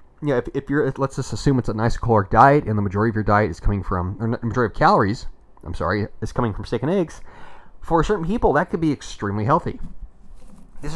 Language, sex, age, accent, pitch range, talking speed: English, male, 30-49, American, 105-145 Hz, 235 wpm